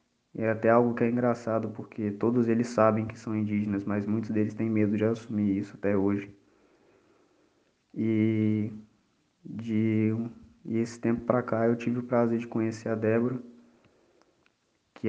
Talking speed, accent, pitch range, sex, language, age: 160 wpm, Brazilian, 100-115 Hz, male, Portuguese, 20-39